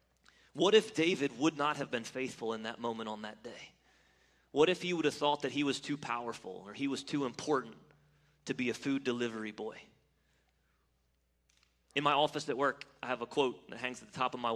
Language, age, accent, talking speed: English, 30-49, American, 215 wpm